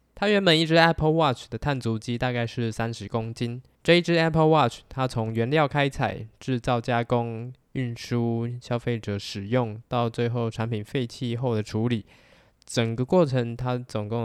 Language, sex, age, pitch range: Chinese, male, 10-29, 110-135 Hz